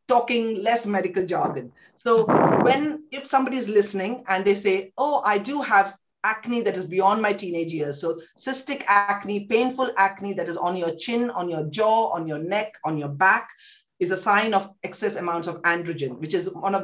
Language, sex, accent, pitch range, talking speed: English, female, Indian, 165-215 Hz, 195 wpm